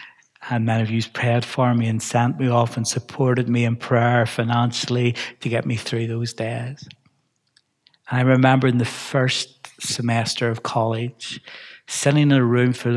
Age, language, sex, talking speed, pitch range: 60-79, English, male, 165 wpm, 115-135 Hz